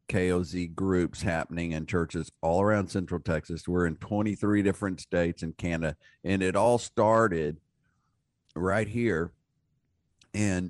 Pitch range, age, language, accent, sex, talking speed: 80-100 Hz, 50-69, English, American, male, 130 wpm